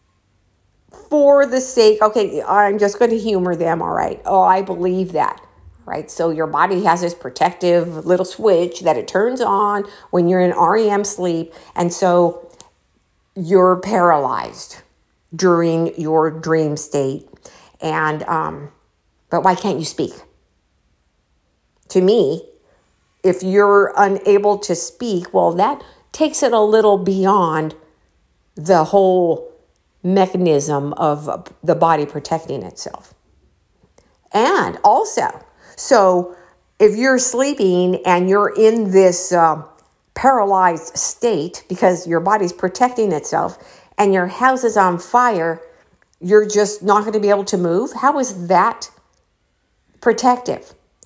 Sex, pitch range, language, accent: female, 170-220 Hz, English, American